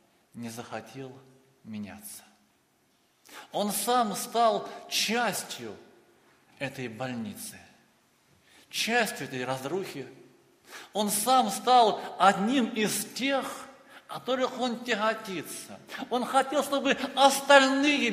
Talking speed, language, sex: 85 wpm, Russian, male